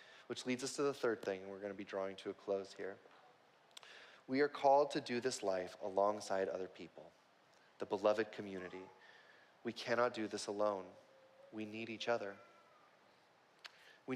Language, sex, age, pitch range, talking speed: English, male, 30-49, 105-130 Hz, 170 wpm